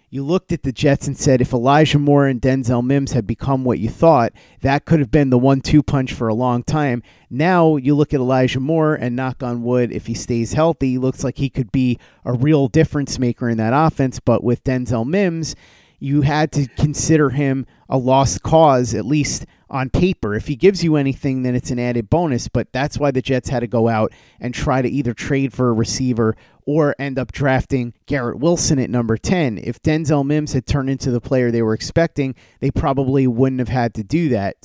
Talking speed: 220 wpm